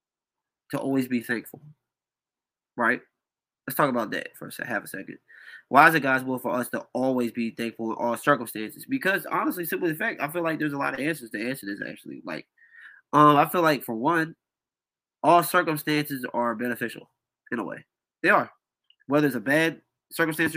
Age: 20-39